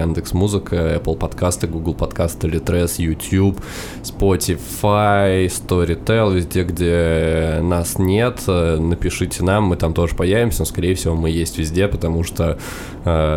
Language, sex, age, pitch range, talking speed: Russian, male, 20-39, 80-100 Hz, 125 wpm